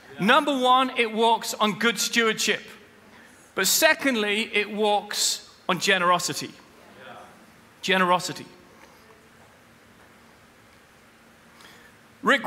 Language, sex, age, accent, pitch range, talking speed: English, male, 40-59, British, 200-235 Hz, 70 wpm